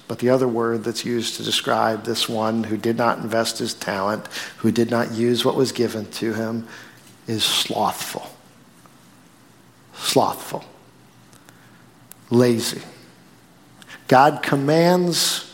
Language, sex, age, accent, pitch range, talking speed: English, male, 50-69, American, 115-140 Hz, 120 wpm